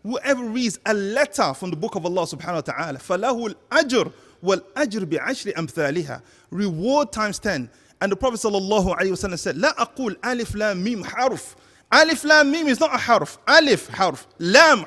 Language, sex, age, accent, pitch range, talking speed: English, male, 30-49, Nigerian, 175-265 Hz, 160 wpm